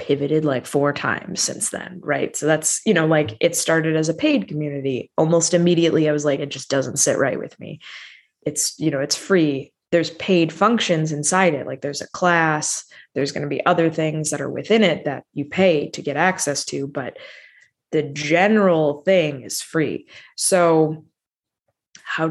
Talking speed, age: 185 wpm, 20-39